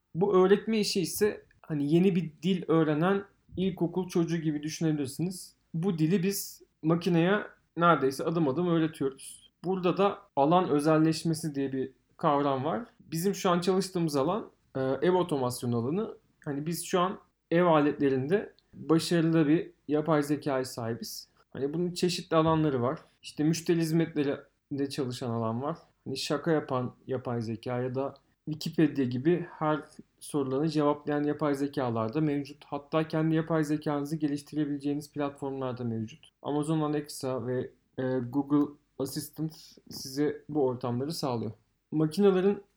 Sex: male